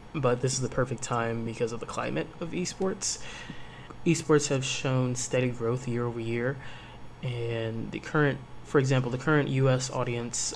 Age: 20-39